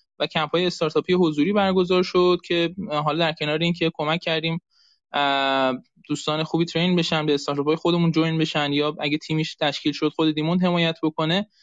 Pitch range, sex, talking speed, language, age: 150-175 Hz, male, 160 wpm, Persian, 20-39